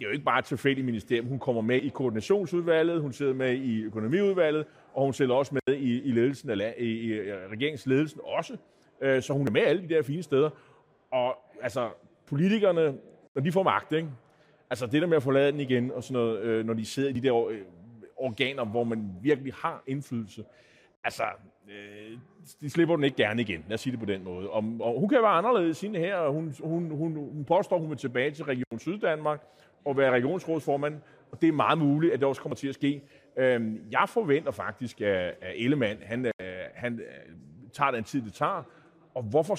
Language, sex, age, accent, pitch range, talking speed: Danish, male, 30-49, native, 120-155 Hz, 195 wpm